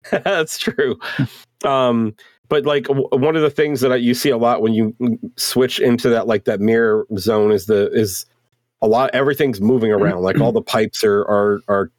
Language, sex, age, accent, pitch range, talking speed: English, male, 40-59, American, 100-125 Hz, 190 wpm